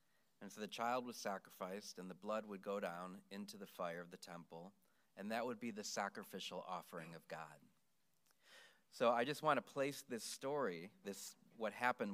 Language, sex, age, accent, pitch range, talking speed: English, male, 30-49, American, 100-145 Hz, 190 wpm